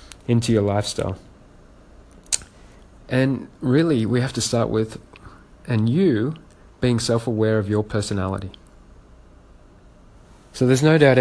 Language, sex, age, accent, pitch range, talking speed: English, male, 30-49, Australian, 100-130 Hz, 110 wpm